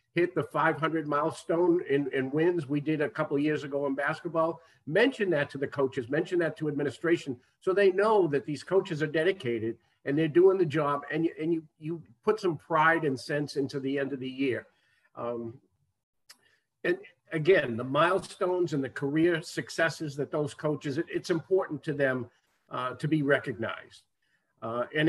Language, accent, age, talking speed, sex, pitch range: English, American, 50-69, 185 wpm, male, 140-170 Hz